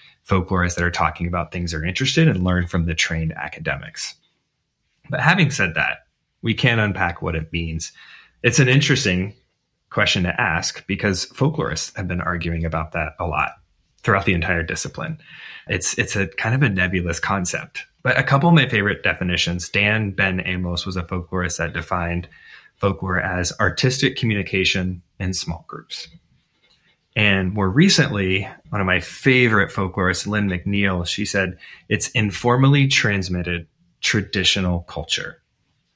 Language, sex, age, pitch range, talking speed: English, male, 20-39, 90-105 Hz, 150 wpm